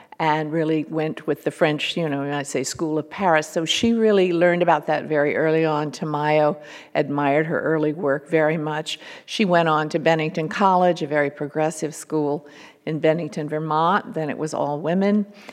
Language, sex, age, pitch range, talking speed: English, female, 50-69, 150-170 Hz, 180 wpm